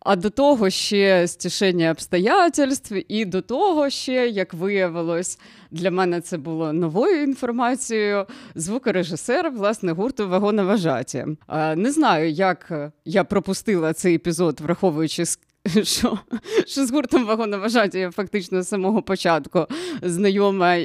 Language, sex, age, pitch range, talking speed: Ukrainian, female, 20-39, 175-225 Hz, 120 wpm